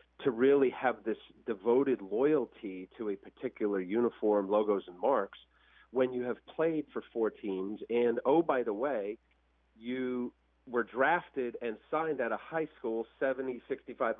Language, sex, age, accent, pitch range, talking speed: English, male, 40-59, American, 110-150 Hz, 150 wpm